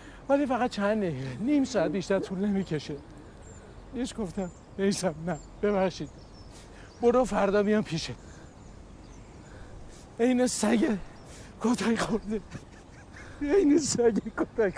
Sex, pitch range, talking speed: male, 190-230 Hz, 100 wpm